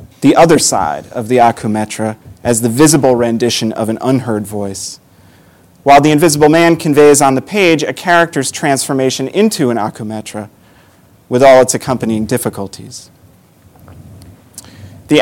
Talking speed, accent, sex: 135 wpm, American, male